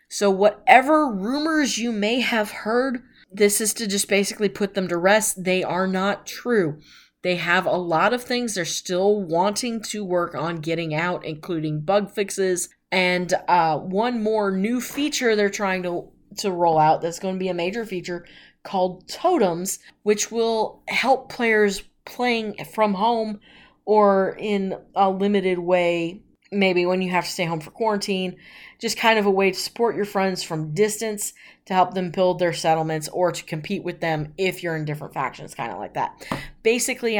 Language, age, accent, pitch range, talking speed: English, 20-39, American, 170-210 Hz, 180 wpm